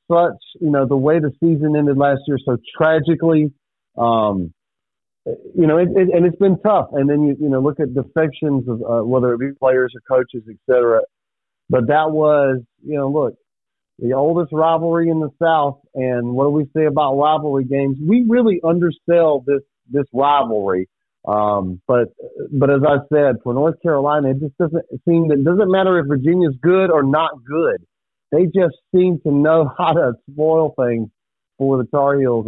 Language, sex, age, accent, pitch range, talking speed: English, male, 40-59, American, 125-160 Hz, 185 wpm